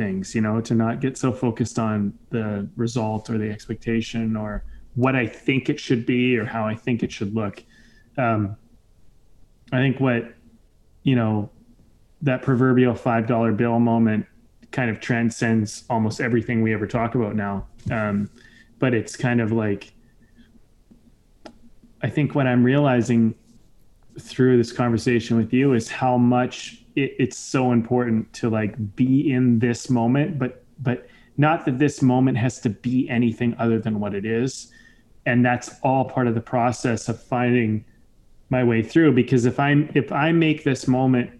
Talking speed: 165 wpm